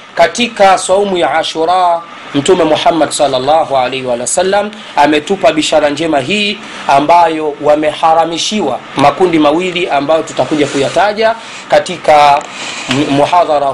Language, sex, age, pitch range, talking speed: Swahili, male, 30-49, 135-165 Hz, 100 wpm